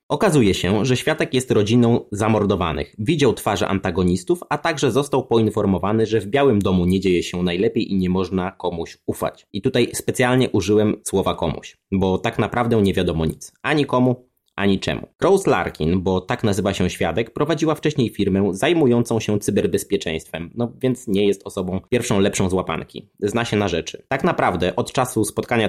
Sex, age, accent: male, 20-39, native